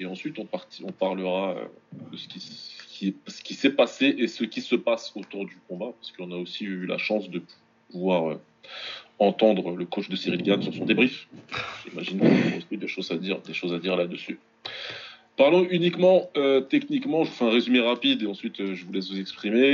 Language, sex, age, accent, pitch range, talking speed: French, male, 20-39, French, 95-125 Hz, 205 wpm